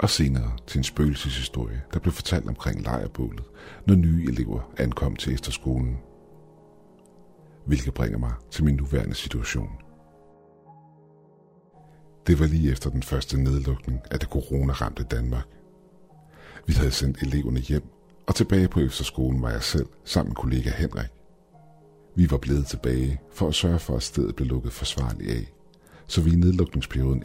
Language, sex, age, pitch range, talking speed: Danish, male, 60-79, 65-85 Hz, 150 wpm